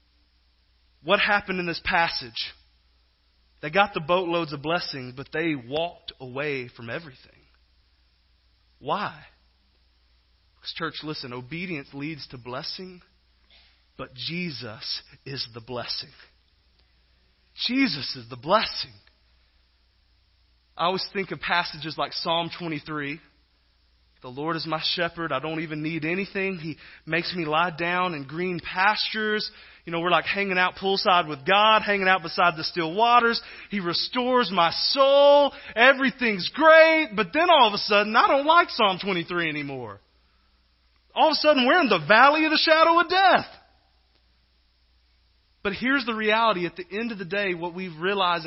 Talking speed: 145 wpm